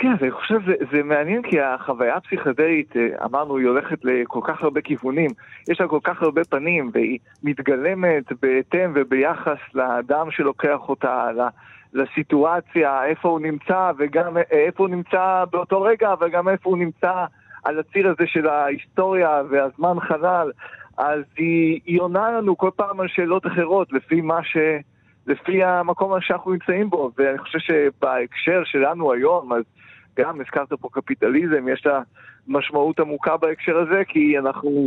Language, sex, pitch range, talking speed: Hebrew, male, 140-175 Hz, 145 wpm